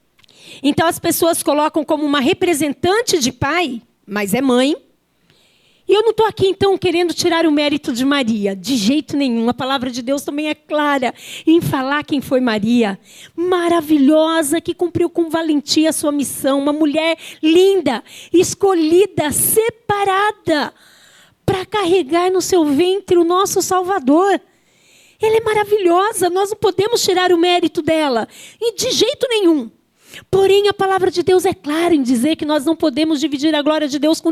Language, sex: Portuguese, female